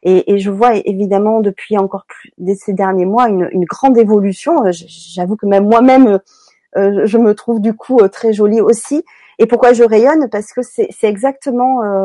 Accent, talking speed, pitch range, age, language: French, 180 wpm, 205-250 Hz, 40-59, French